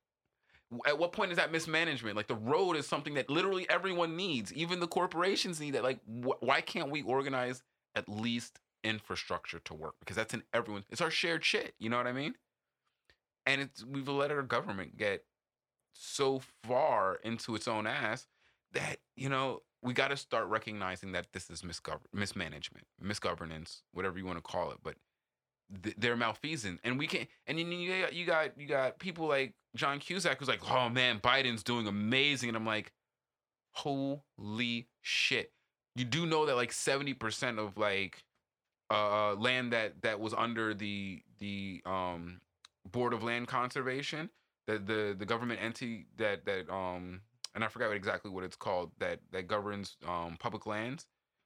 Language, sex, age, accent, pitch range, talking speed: English, male, 30-49, American, 105-140 Hz, 175 wpm